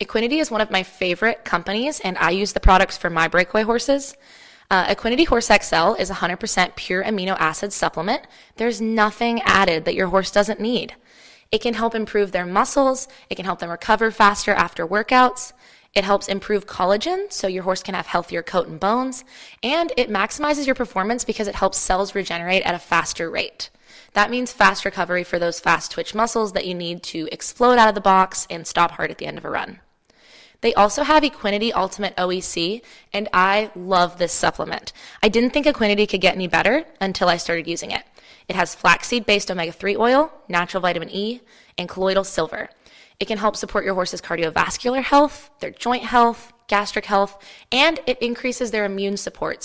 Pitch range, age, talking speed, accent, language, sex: 185-235 Hz, 20-39, 190 wpm, American, English, female